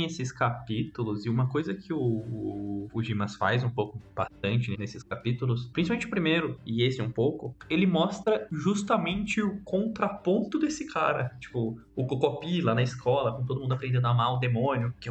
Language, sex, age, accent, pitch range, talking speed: Portuguese, male, 20-39, Brazilian, 115-170 Hz, 180 wpm